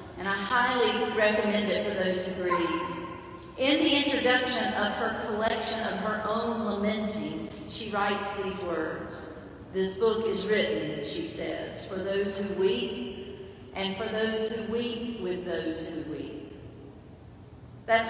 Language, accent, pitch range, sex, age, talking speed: English, American, 170-220 Hz, female, 40-59, 145 wpm